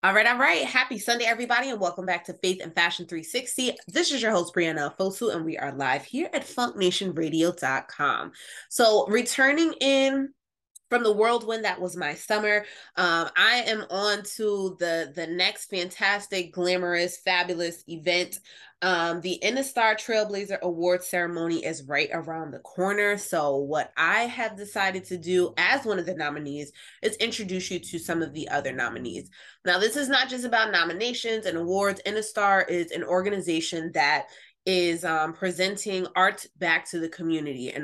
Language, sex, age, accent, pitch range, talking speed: English, female, 20-39, American, 165-205 Hz, 165 wpm